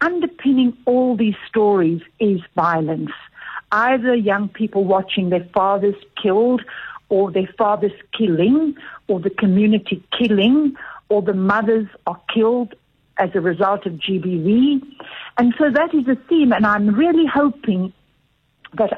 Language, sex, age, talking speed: English, female, 60-79, 135 wpm